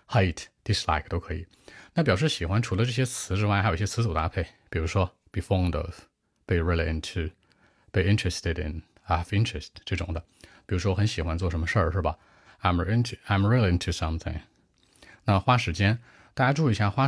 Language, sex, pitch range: Chinese, male, 85-110 Hz